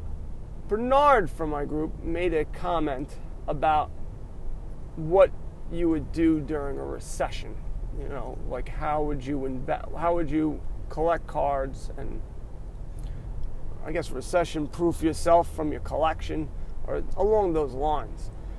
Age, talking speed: 30-49, 125 wpm